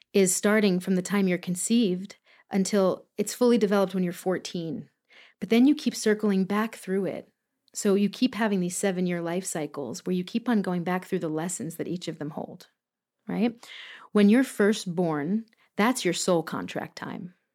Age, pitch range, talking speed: 40-59, 175-210 Hz, 185 wpm